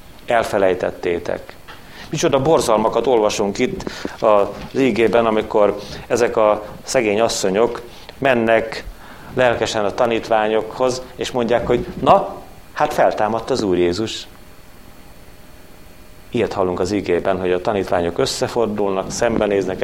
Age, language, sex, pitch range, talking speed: 30-49, Hungarian, male, 90-125 Hz, 105 wpm